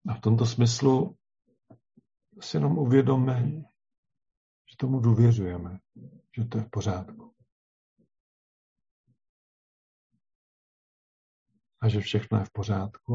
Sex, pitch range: male, 95-115 Hz